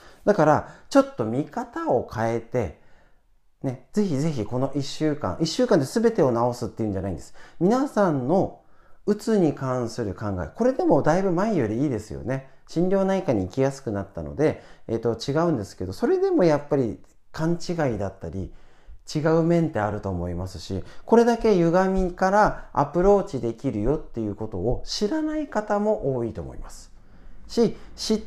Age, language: 40-59, Japanese